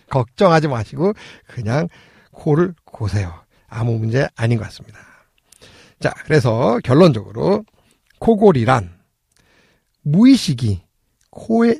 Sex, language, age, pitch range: male, Korean, 50-69, 125-210 Hz